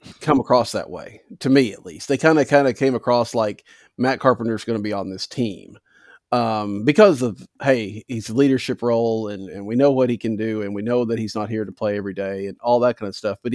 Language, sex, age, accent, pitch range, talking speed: English, male, 40-59, American, 105-130 Hz, 255 wpm